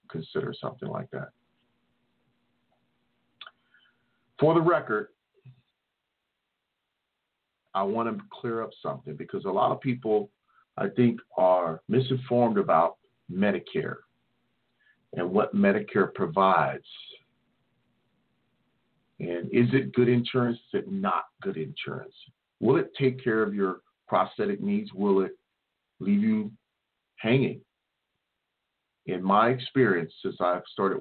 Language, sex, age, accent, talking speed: English, male, 50-69, American, 110 wpm